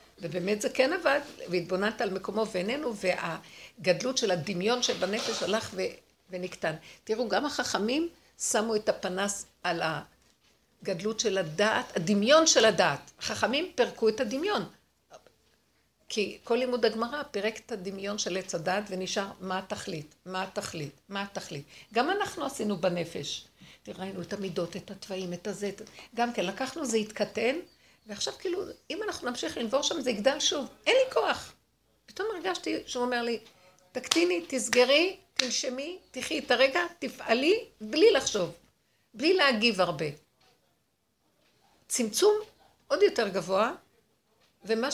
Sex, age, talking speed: female, 60-79, 135 wpm